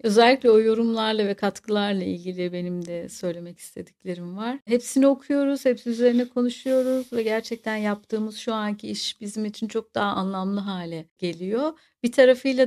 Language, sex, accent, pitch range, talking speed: Turkish, female, native, 195-245 Hz, 145 wpm